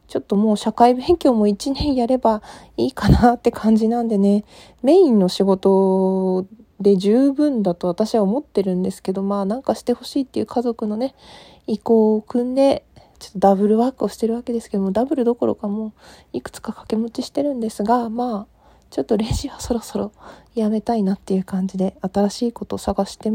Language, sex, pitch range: Japanese, female, 200-250 Hz